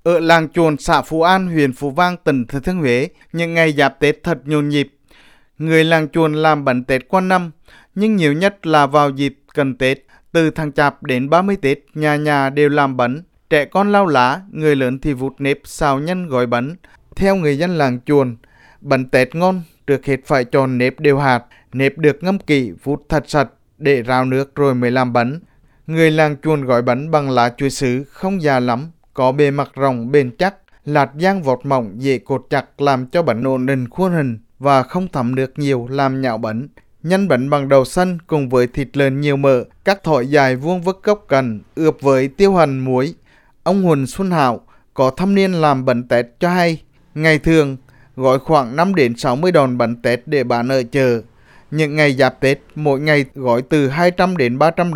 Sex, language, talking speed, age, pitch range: male, Vietnamese, 200 wpm, 20-39, 130-160 Hz